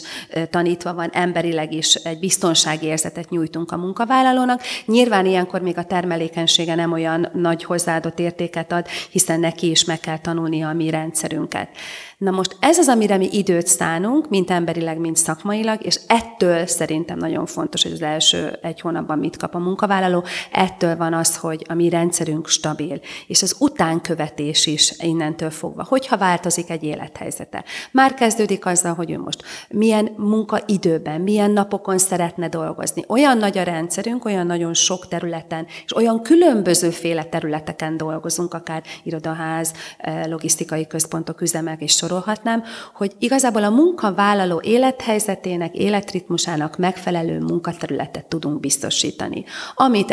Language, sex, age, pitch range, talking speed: Hungarian, female, 30-49, 160-200 Hz, 140 wpm